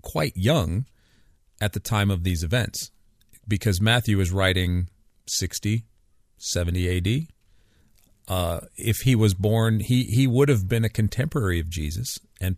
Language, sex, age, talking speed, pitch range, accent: English, male, 40-59, 145 wpm, 90-115 Hz, American